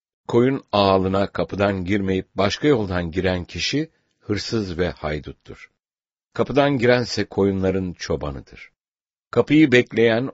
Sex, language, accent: male, English, Turkish